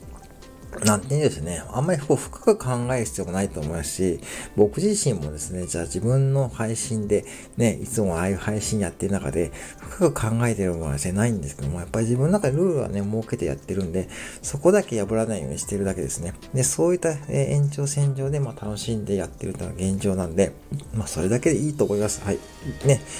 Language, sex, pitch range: Japanese, male, 95-125 Hz